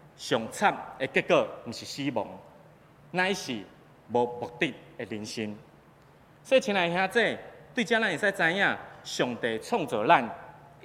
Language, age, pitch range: Chinese, 30-49, 120-175 Hz